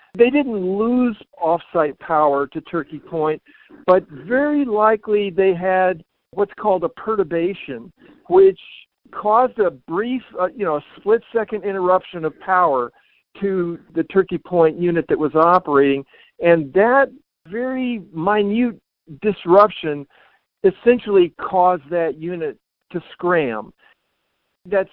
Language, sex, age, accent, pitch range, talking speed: English, male, 60-79, American, 165-220 Hz, 120 wpm